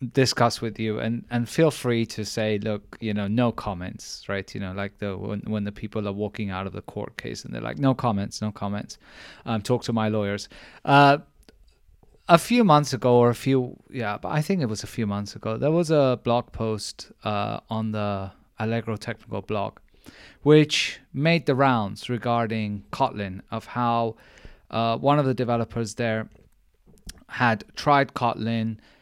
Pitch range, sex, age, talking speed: 105-130 Hz, male, 20-39, 180 wpm